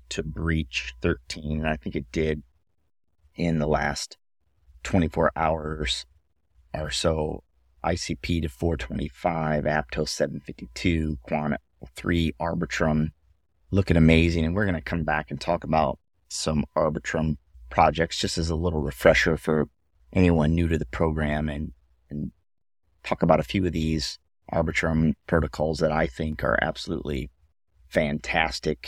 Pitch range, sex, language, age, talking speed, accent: 75-85 Hz, male, English, 30-49, 135 wpm, American